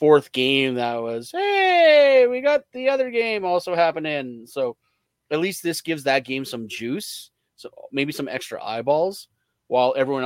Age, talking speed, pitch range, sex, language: 30-49, 165 wpm, 115-145 Hz, male, English